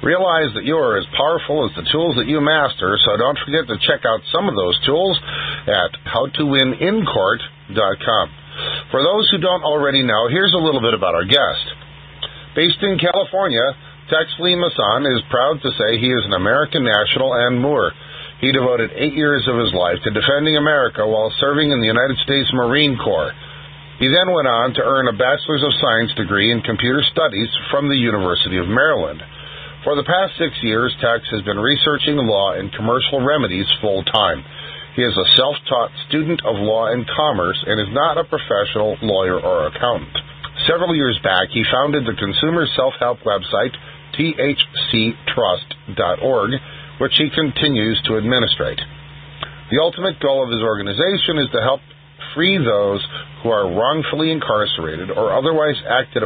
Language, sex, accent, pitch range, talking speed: English, male, American, 115-155 Hz, 165 wpm